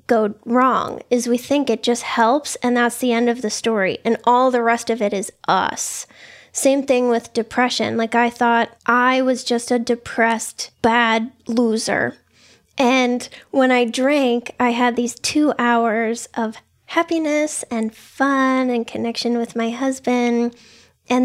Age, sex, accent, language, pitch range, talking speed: 10-29, female, American, English, 230-260 Hz, 160 wpm